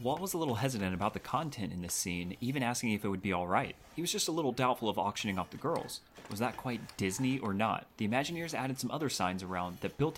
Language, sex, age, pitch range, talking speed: English, male, 30-49, 95-130 Hz, 260 wpm